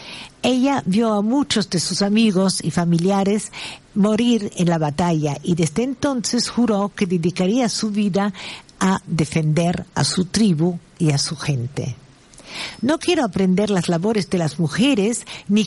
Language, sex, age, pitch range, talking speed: Spanish, female, 50-69, 155-210 Hz, 150 wpm